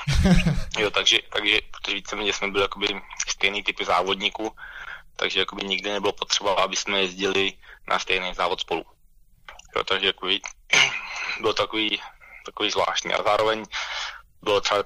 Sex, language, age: male, Slovak, 20-39